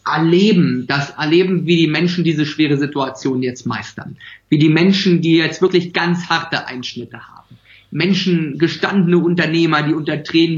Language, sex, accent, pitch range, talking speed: German, male, German, 145-170 Hz, 155 wpm